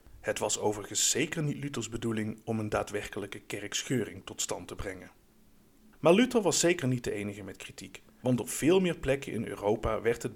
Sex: male